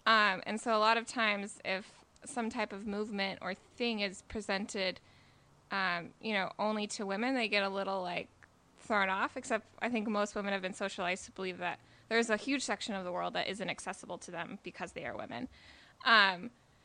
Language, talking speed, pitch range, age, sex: English, 205 wpm, 190-240 Hz, 20-39, female